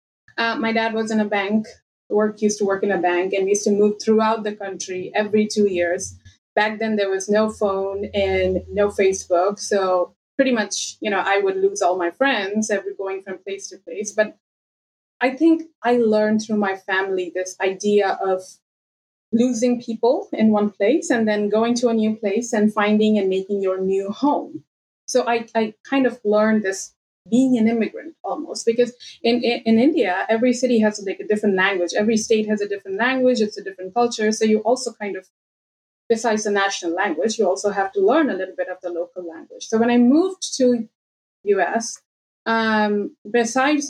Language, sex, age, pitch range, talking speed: English, female, 20-39, 195-235 Hz, 195 wpm